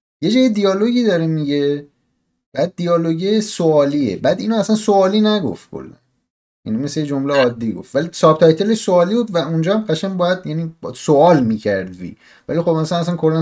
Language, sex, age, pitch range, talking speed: Persian, male, 30-49, 105-155 Hz, 155 wpm